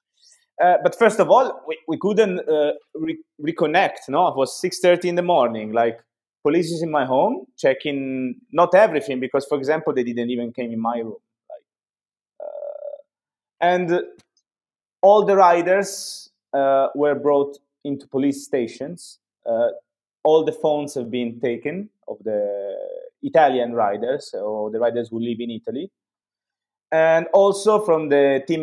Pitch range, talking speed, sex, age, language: 120-180 Hz, 155 wpm, male, 30-49, English